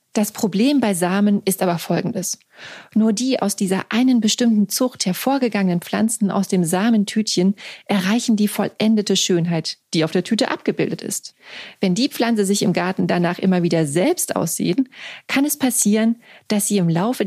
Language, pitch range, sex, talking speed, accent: German, 190-230 Hz, female, 165 wpm, German